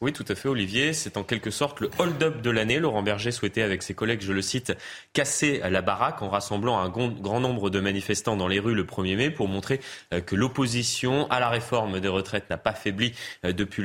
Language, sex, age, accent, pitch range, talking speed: French, male, 30-49, French, 100-130 Hz, 220 wpm